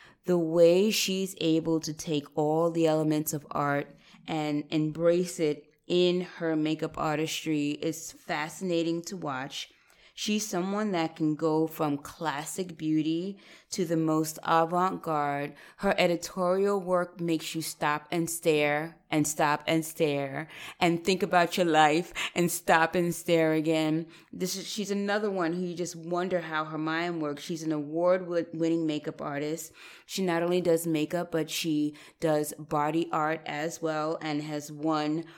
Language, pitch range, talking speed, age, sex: English, 155-175 Hz, 150 wpm, 20-39, female